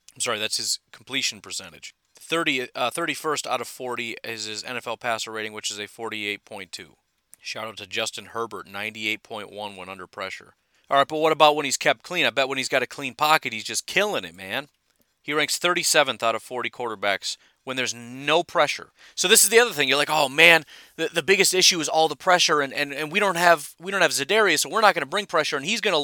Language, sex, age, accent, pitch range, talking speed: English, male, 30-49, American, 125-165 Hz, 235 wpm